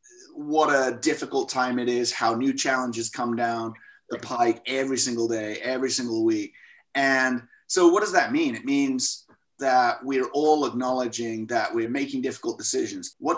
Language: English